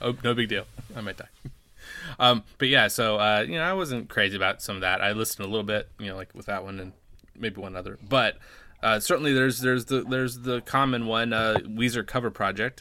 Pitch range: 95-125 Hz